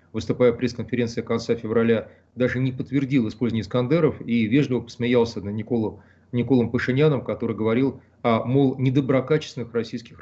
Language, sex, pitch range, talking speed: Russian, male, 115-135 Hz, 130 wpm